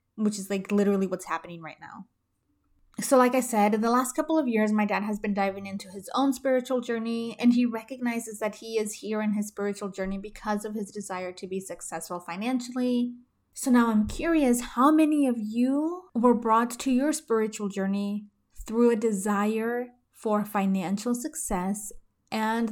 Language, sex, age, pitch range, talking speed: English, female, 20-39, 195-240 Hz, 180 wpm